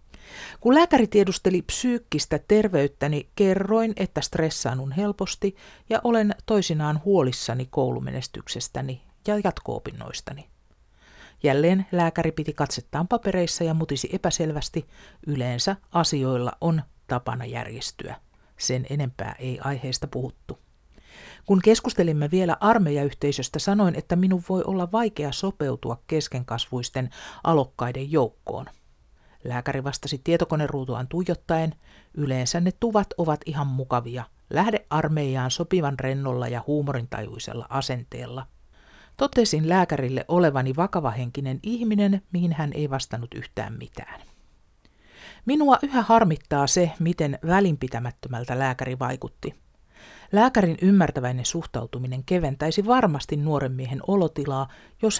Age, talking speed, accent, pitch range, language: 50-69, 100 wpm, native, 130-185 Hz, Finnish